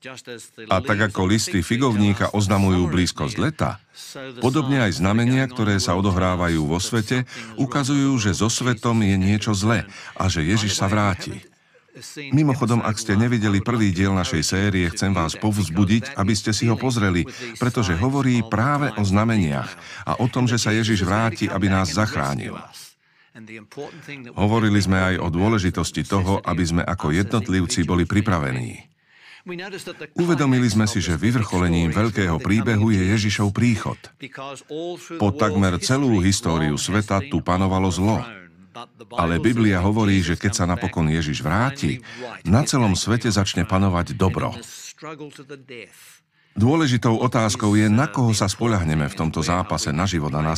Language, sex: Slovak, male